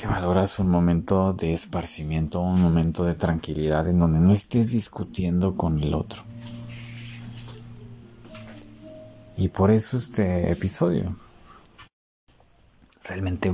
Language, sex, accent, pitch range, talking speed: Spanish, male, Mexican, 85-110 Hz, 105 wpm